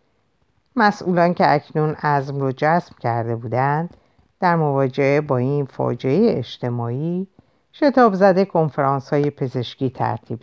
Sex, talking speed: female, 115 wpm